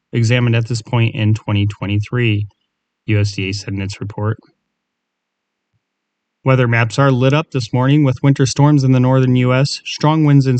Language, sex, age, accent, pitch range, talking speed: English, male, 30-49, American, 115-135 Hz, 160 wpm